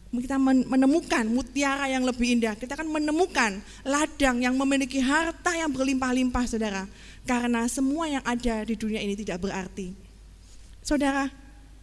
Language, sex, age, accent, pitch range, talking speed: Indonesian, female, 20-39, native, 225-270 Hz, 130 wpm